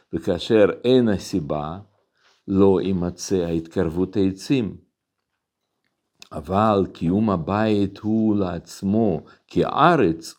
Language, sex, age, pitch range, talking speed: Hebrew, male, 50-69, 85-115 Hz, 80 wpm